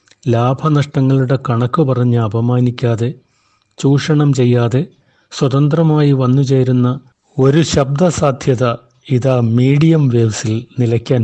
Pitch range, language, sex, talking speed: 125-145 Hz, Malayalam, male, 80 wpm